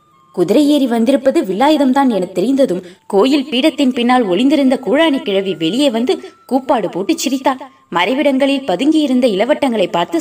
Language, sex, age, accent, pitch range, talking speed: Tamil, female, 20-39, native, 195-295 Hz, 130 wpm